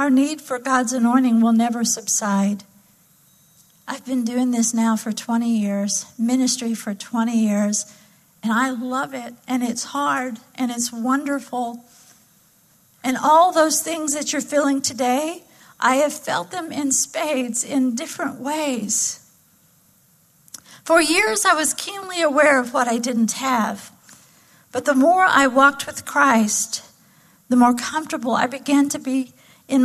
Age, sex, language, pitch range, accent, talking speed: 50-69, female, English, 215-295 Hz, American, 145 wpm